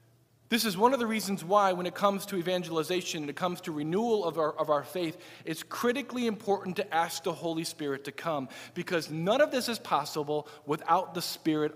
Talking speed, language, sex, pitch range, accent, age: 205 wpm, English, male, 145-195 Hz, American, 40-59